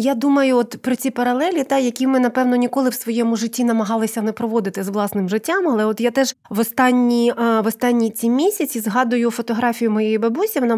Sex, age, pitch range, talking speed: female, 30-49, 200-250 Hz, 195 wpm